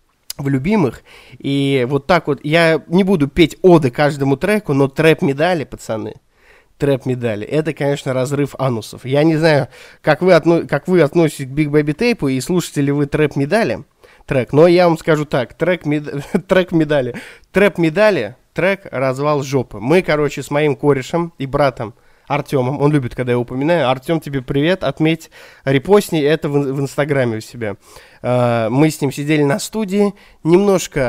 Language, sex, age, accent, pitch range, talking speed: Russian, male, 20-39, native, 135-170 Hz, 155 wpm